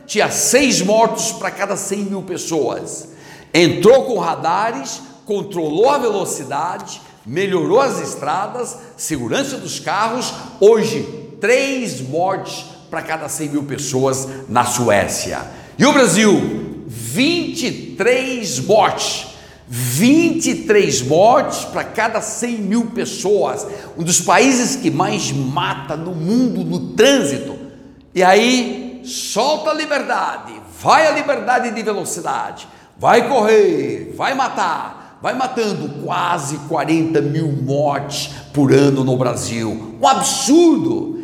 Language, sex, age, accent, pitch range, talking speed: Portuguese, male, 60-79, Brazilian, 165-270 Hz, 115 wpm